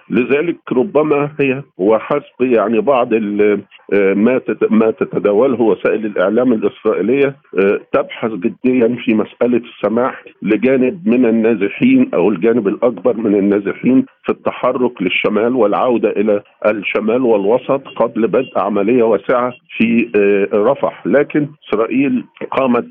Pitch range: 105-140 Hz